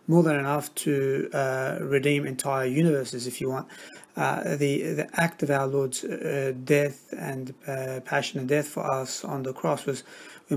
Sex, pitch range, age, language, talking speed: male, 135-150 Hz, 30-49, English, 180 wpm